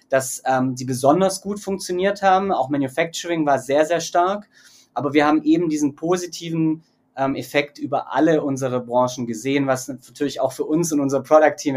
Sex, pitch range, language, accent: male, 130-155 Hz, German, German